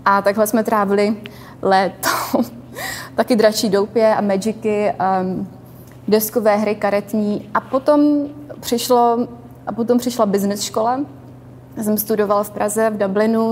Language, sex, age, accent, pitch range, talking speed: Czech, female, 20-39, native, 205-235 Hz, 130 wpm